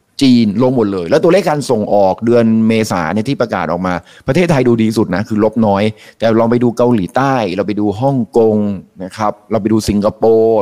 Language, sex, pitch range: Thai, male, 100-130 Hz